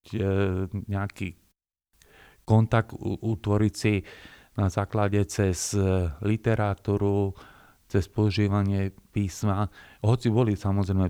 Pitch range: 100-110 Hz